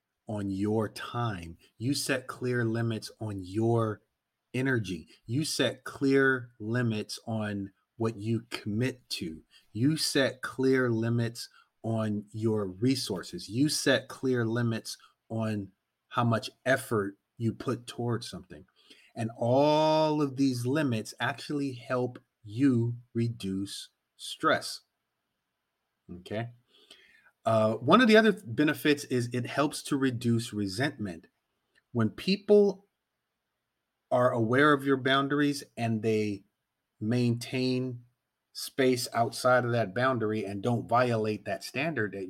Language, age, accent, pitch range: English, 30-49, American, 110-130 Hz